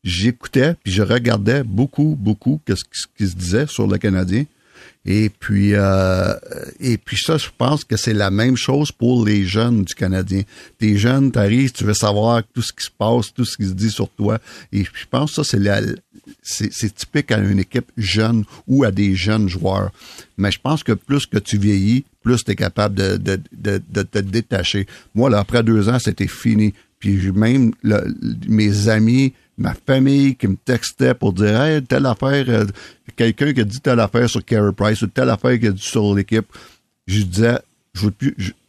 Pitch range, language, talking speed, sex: 100-120 Hz, French, 205 wpm, male